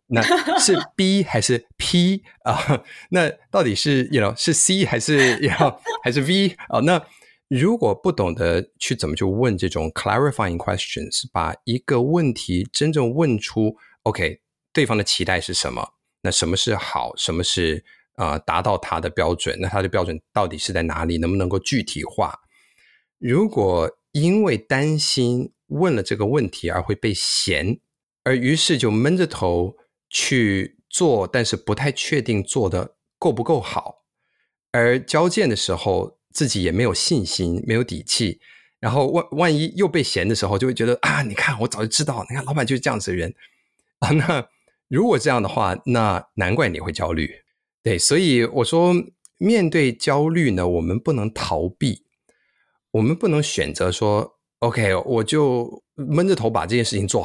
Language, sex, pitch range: Chinese, male, 100-155 Hz